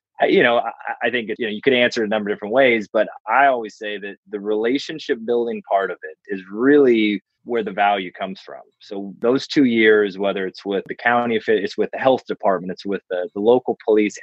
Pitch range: 95-115 Hz